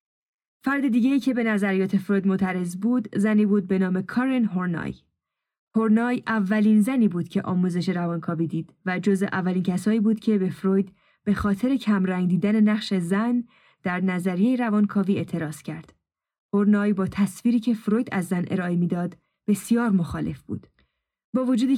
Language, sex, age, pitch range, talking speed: Persian, female, 10-29, 185-225 Hz, 150 wpm